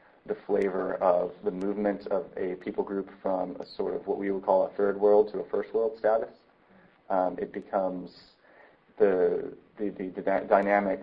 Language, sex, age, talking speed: English, male, 30-49, 180 wpm